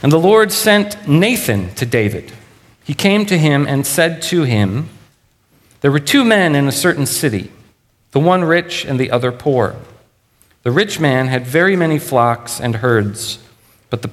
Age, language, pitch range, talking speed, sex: 40-59, English, 115-150 Hz, 175 wpm, male